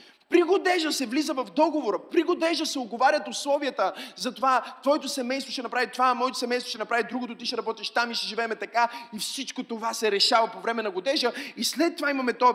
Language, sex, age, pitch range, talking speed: Bulgarian, male, 20-39, 220-290 Hz, 210 wpm